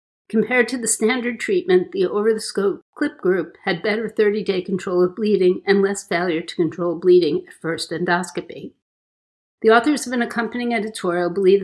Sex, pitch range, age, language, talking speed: female, 180-220 Hz, 50-69, English, 165 wpm